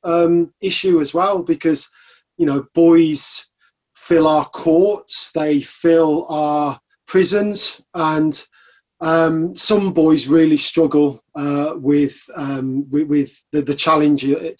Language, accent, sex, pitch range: English, British, male, 140-165 Hz